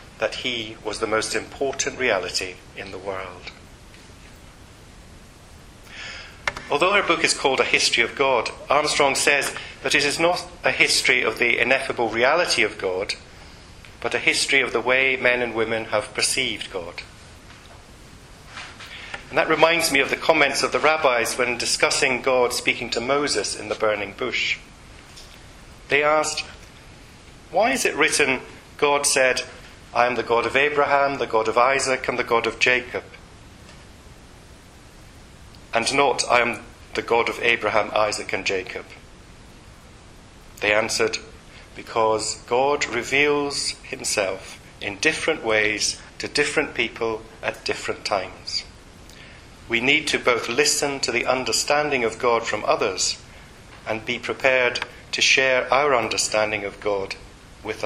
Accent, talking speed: British, 140 wpm